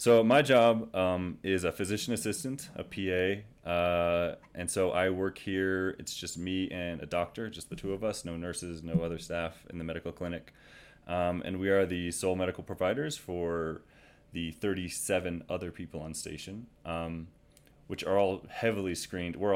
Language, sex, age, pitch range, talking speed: English, male, 30-49, 80-95 Hz, 180 wpm